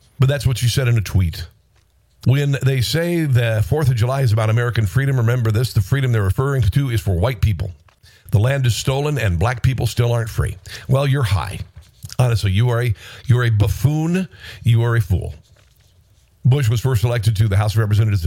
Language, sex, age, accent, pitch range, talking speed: English, male, 50-69, American, 105-130 Hz, 205 wpm